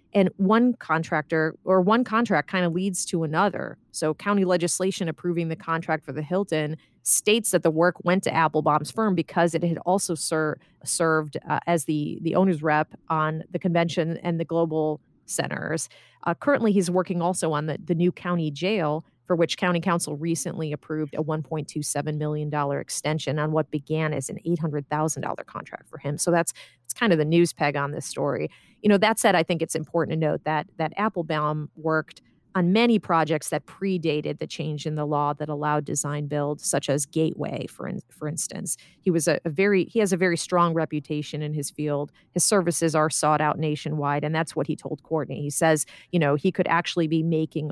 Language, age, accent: English, 30-49, American